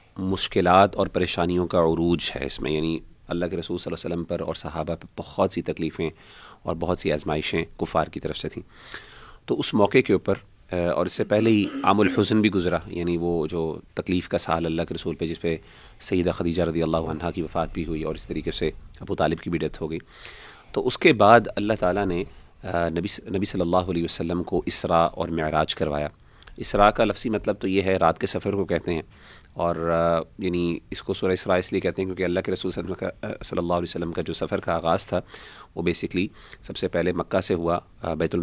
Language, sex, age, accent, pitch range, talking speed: English, male, 30-49, Indian, 85-95 Hz, 150 wpm